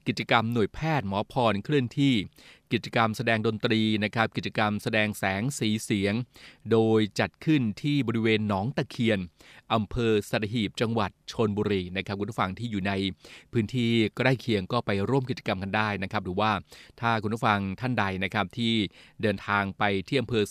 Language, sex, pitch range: Thai, male, 105-125 Hz